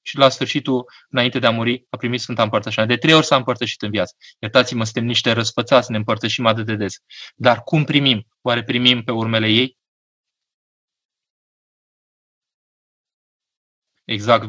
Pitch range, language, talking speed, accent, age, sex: 110-130 Hz, Romanian, 150 wpm, native, 20-39, male